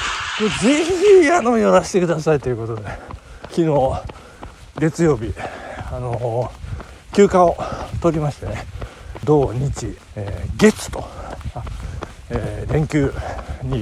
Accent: native